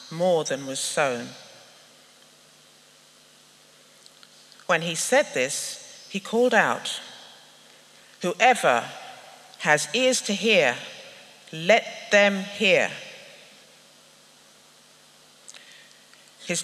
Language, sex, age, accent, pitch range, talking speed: English, female, 60-79, British, 170-255 Hz, 70 wpm